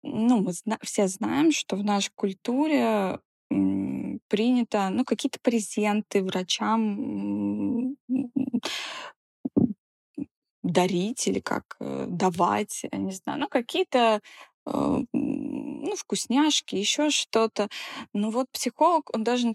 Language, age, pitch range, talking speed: Russian, 20-39, 185-245 Hz, 100 wpm